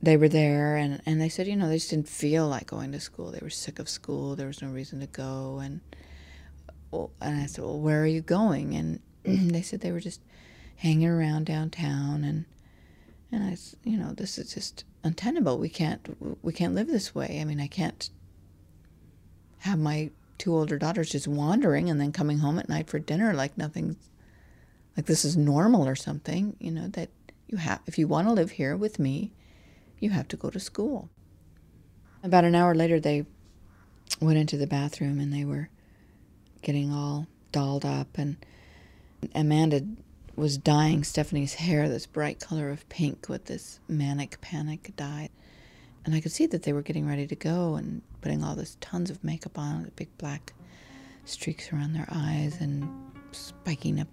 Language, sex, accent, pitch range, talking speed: English, female, American, 140-165 Hz, 190 wpm